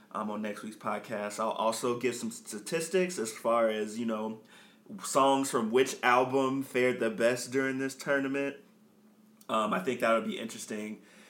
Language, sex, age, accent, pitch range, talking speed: English, male, 20-39, American, 110-135 Hz, 165 wpm